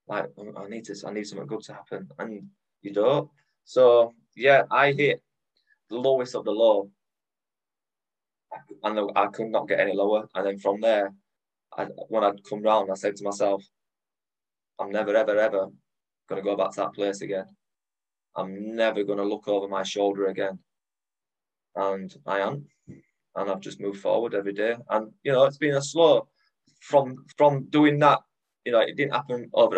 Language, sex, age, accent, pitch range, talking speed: English, male, 20-39, British, 100-115 Hz, 180 wpm